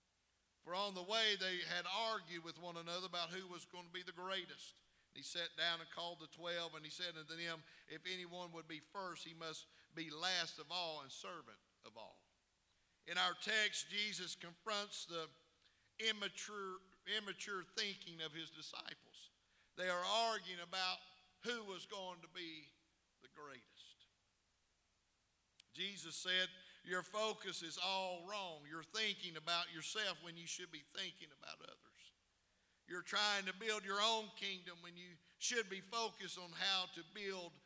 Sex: male